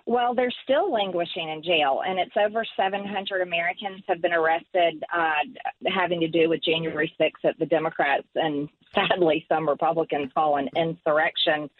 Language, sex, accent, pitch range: English, female, American, 165-200 Hz